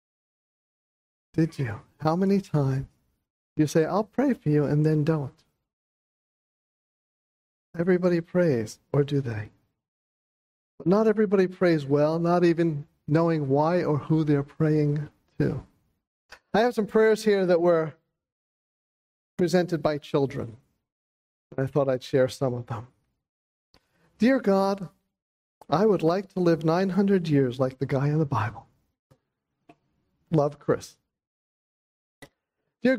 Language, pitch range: English, 135-200 Hz